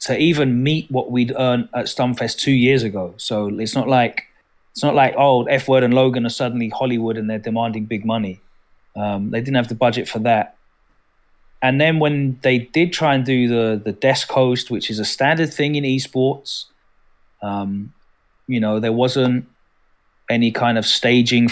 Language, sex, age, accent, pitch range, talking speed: English, male, 30-49, British, 110-125 Hz, 185 wpm